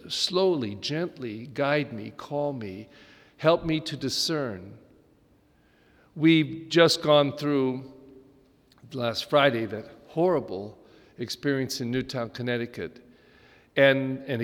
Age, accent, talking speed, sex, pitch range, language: 50-69, American, 100 wpm, male, 115-150 Hz, English